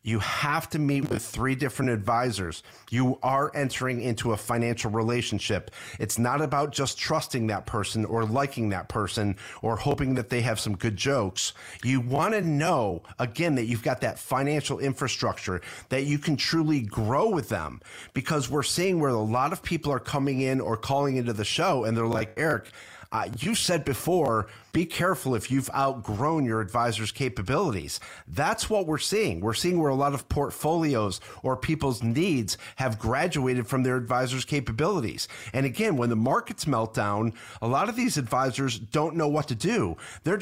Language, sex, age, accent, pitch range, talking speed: English, male, 40-59, American, 115-140 Hz, 180 wpm